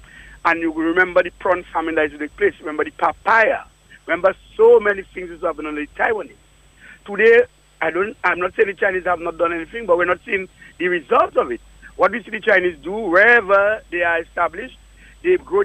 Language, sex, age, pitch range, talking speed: English, male, 60-79, 180-270 Hz, 210 wpm